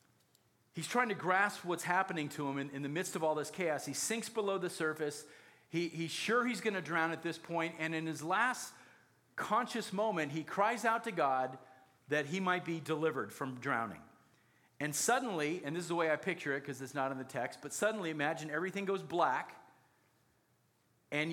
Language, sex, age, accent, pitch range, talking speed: English, male, 40-59, American, 145-190 Hz, 200 wpm